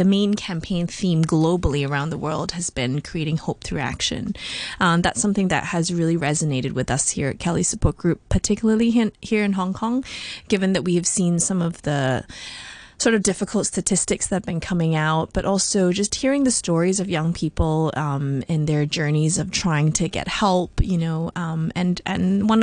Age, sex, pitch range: 20-39, female, 160-195 Hz